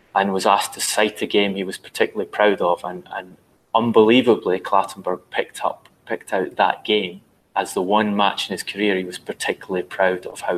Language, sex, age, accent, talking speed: English, male, 30-49, British, 200 wpm